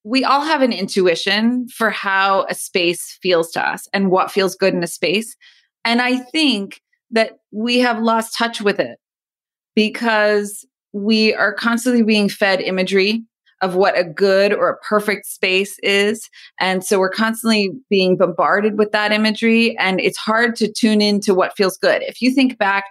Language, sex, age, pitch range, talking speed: English, female, 30-49, 190-235 Hz, 175 wpm